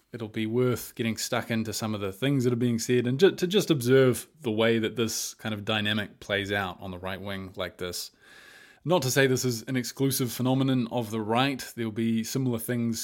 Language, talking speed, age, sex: English, 220 wpm, 20-39, male